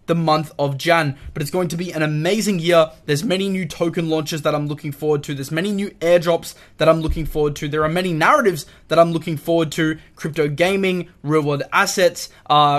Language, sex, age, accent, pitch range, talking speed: English, male, 20-39, Australian, 150-175 Hz, 215 wpm